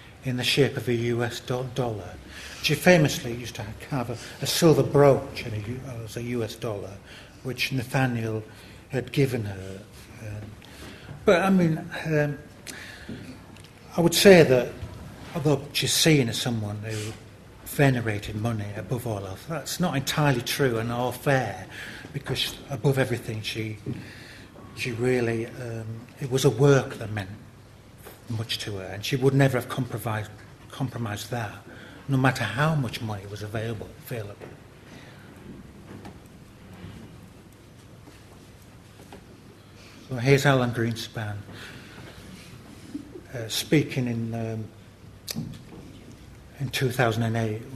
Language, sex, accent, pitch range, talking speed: English, male, British, 105-130 Hz, 120 wpm